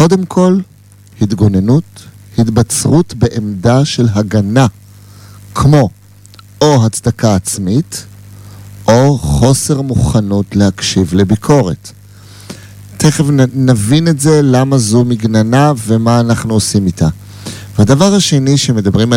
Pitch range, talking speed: 100-135 Hz, 95 wpm